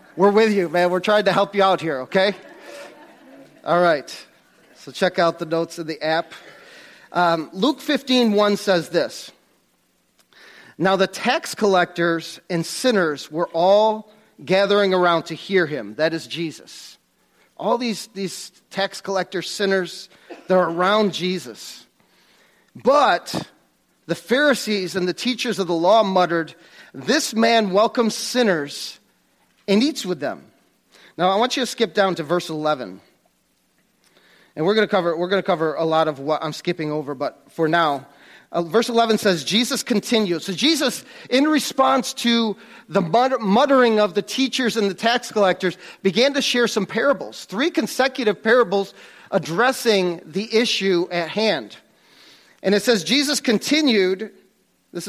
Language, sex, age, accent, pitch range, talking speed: Ukrainian, male, 40-59, American, 175-230 Hz, 145 wpm